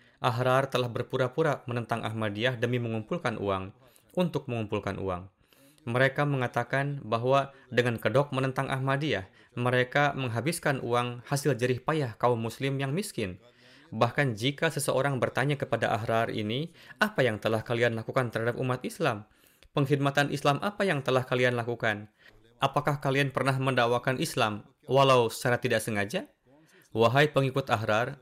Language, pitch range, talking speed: Indonesian, 120-140 Hz, 130 wpm